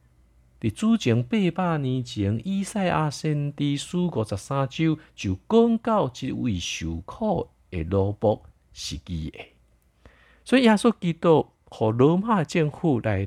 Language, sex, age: Chinese, male, 50-69